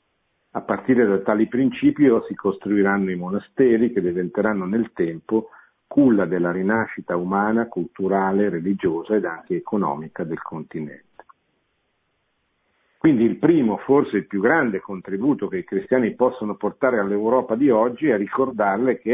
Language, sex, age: Italian, male, 50-69